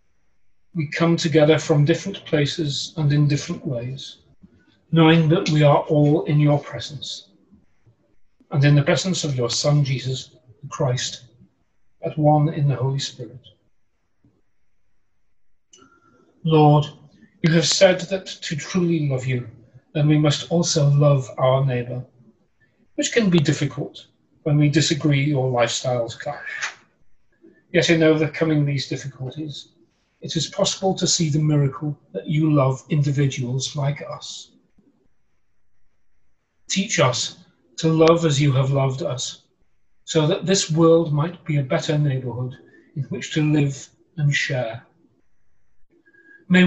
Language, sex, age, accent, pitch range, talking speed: English, male, 40-59, British, 135-165 Hz, 130 wpm